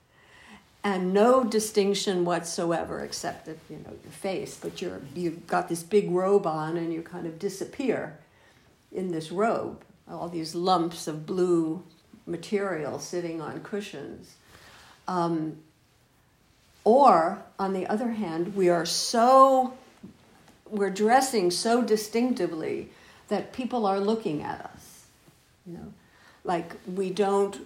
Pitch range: 165-205 Hz